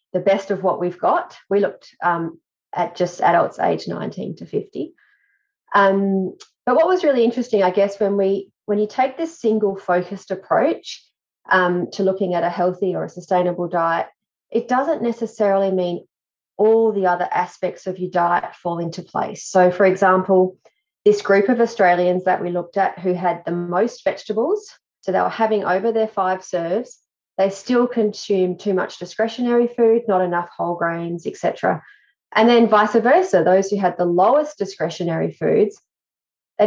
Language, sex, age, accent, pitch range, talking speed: English, female, 30-49, Australian, 175-215 Hz, 175 wpm